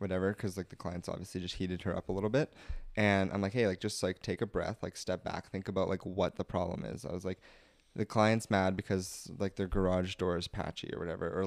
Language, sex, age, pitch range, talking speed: English, male, 20-39, 90-105 Hz, 255 wpm